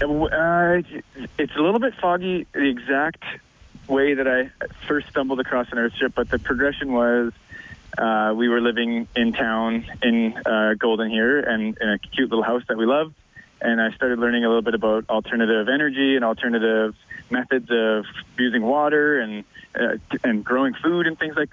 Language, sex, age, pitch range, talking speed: English, male, 20-39, 110-130 Hz, 175 wpm